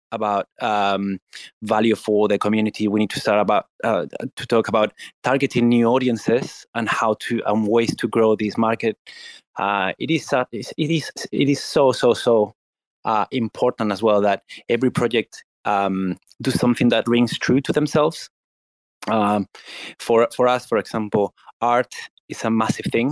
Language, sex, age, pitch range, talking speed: English, male, 20-39, 105-120 Hz, 165 wpm